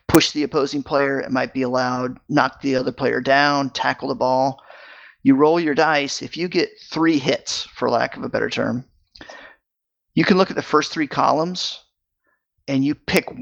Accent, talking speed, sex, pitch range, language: American, 190 wpm, male, 130-155 Hz, English